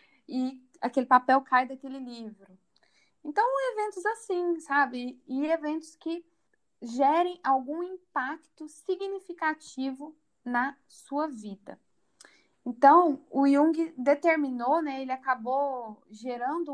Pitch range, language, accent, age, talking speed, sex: 250-315 Hz, Portuguese, Brazilian, 10-29, 100 wpm, female